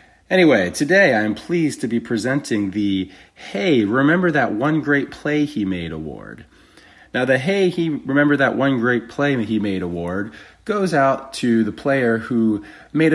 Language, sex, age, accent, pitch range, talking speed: English, male, 30-49, American, 105-150 Hz, 170 wpm